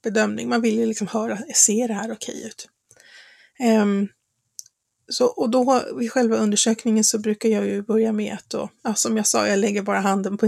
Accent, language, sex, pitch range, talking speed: native, Swedish, female, 200-230 Hz, 200 wpm